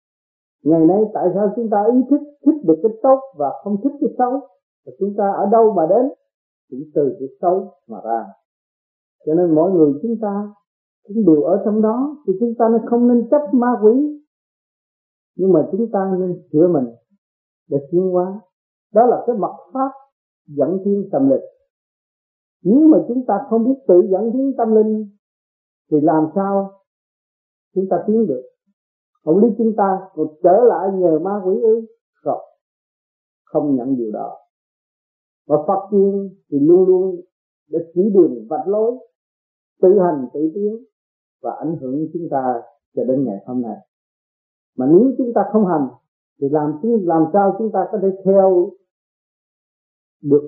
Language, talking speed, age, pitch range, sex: Vietnamese, 170 wpm, 50-69, 165-230 Hz, male